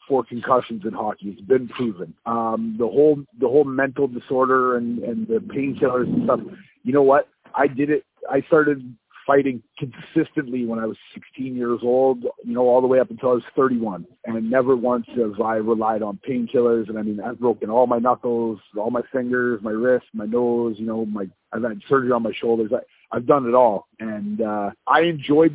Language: English